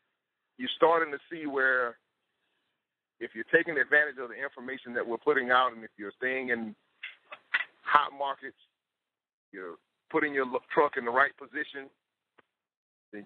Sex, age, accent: male, 50-69, American